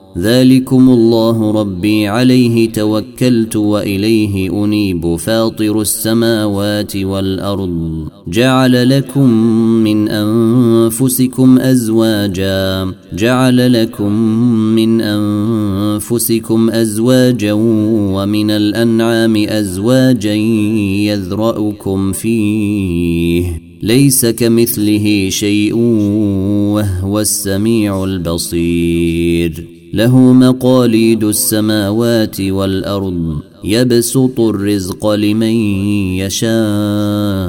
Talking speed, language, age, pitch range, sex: 60 wpm, Arabic, 30-49, 95-115 Hz, male